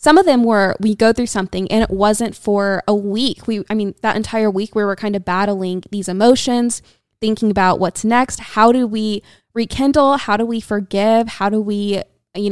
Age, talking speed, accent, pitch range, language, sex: 20-39, 205 wpm, American, 195-230 Hz, English, female